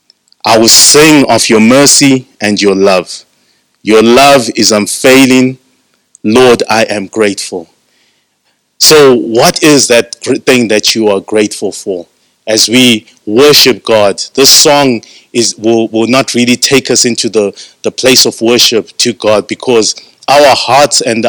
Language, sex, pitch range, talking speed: English, male, 105-125 Hz, 145 wpm